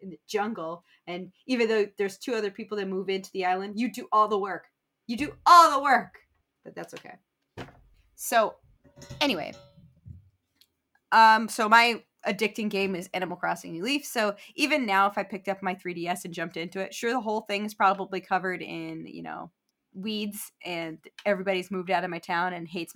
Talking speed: 190 wpm